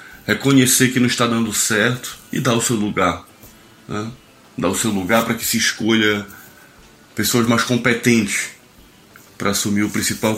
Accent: Brazilian